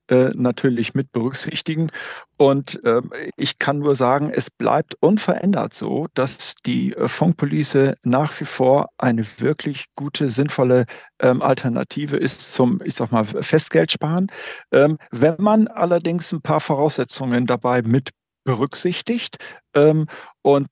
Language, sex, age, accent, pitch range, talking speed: German, male, 50-69, German, 135-165 Hz, 125 wpm